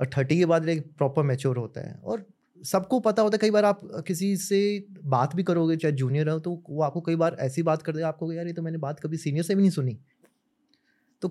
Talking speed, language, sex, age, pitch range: 250 wpm, Hindi, male, 30-49, 145-190 Hz